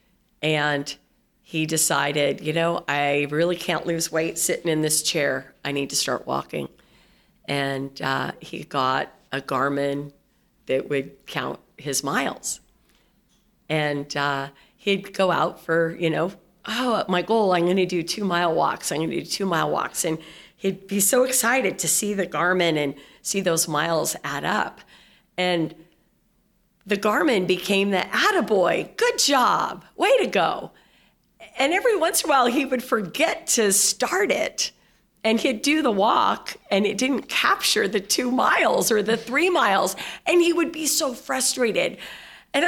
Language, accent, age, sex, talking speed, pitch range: English, American, 50-69, female, 160 wpm, 165-250 Hz